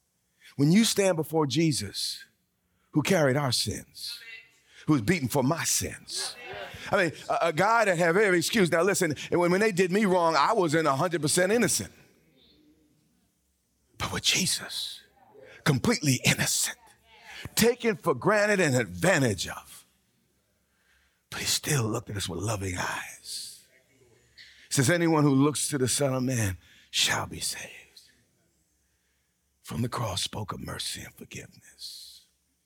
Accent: American